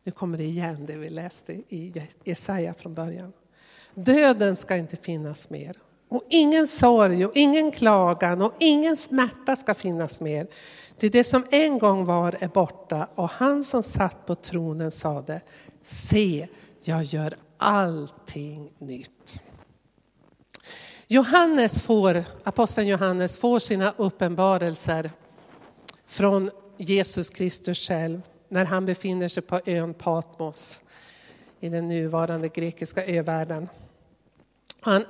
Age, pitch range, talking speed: 50-69, 165-210 Hz, 125 wpm